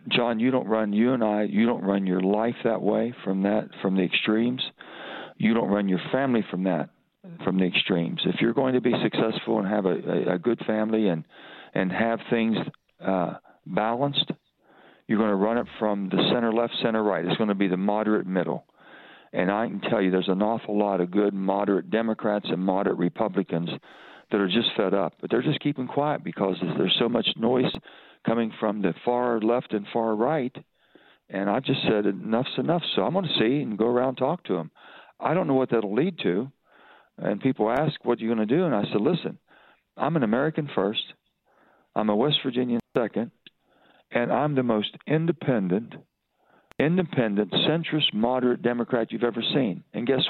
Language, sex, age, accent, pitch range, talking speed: English, male, 50-69, American, 100-125 Hz, 200 wpm